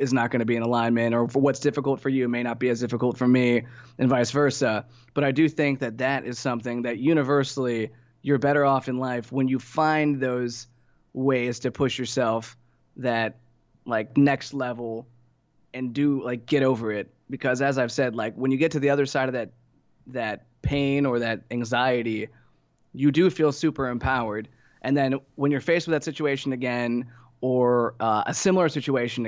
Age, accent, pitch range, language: 20-39, American, 120-145 Hz, English